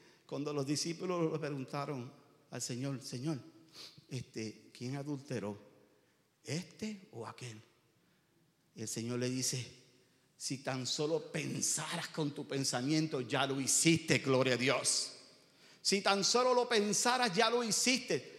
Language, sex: English, male